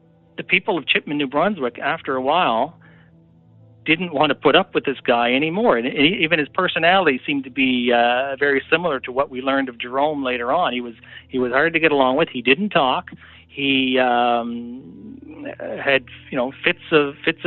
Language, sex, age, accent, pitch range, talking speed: English, male, 50-69, American, 120-155 Hz, 190 wpm